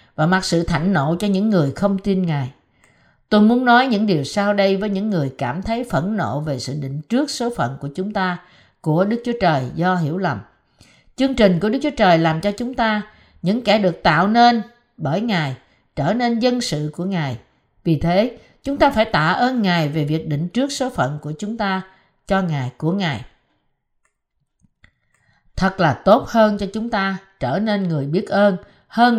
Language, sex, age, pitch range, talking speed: Vietnamese, female, 50-69, 155-220 Hz, 200 wpm